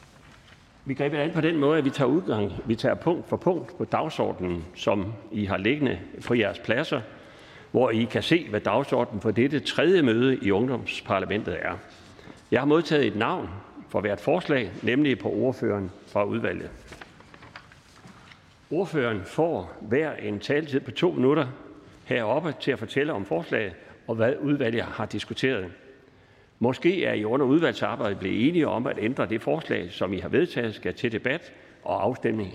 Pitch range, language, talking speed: 105-140 Hz, Danish, 165 wpm